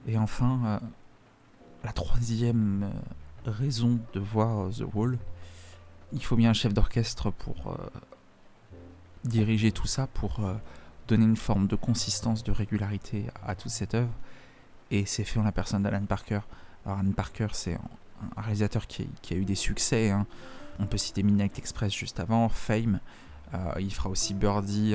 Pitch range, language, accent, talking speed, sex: 100-115 Hz, French, French, 170 wpm, male